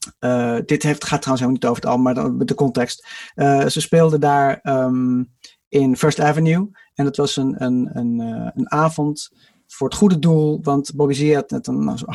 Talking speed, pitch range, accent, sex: 205 wpm, 140-180 Hz, Dutch, male